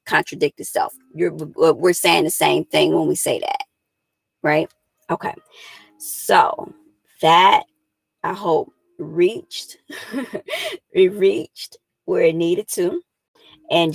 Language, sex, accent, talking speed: English, female, American, 110 wpm